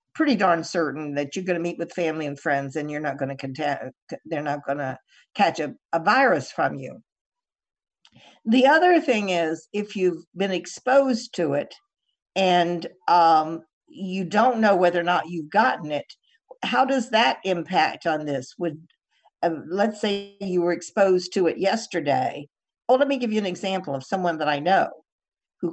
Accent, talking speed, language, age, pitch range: American, 180 wpm, English, 50-69, 160-230 Hz